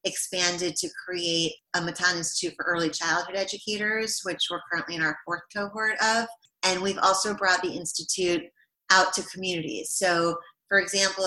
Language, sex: English, female